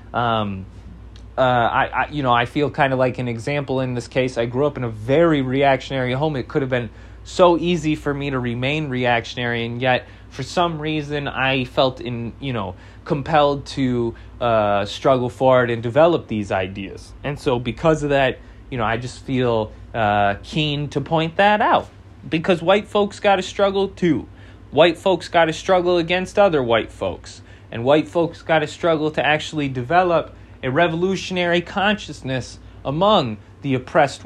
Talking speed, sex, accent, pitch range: 175 wpm, male, American, 110-155 Hz